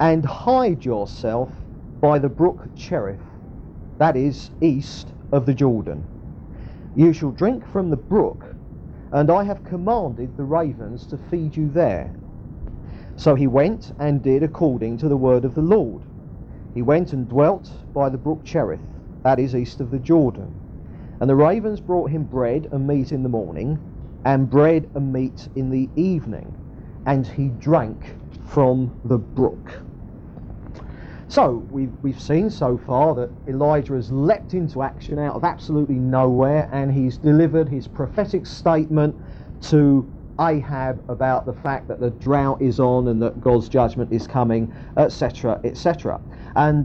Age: 40-59